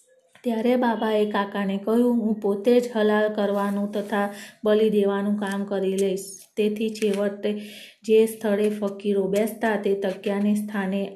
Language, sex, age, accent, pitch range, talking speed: Gujarati, female, 30-49, native, 205-230 Hz, 130 wpm